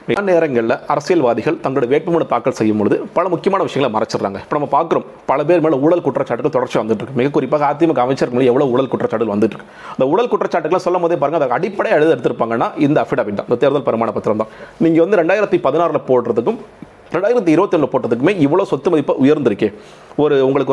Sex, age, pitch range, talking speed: male, 40-59, 135-180 Hz, 180 wpm